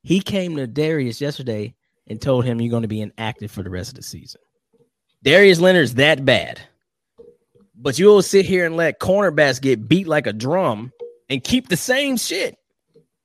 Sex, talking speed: male, 180 wpm